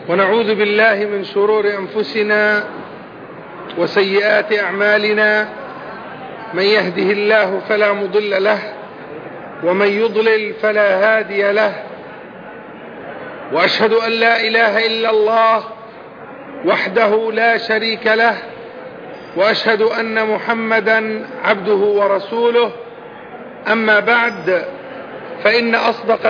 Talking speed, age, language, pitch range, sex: 85 wpm, 40-59, Indonesian, 210-235 Hz, male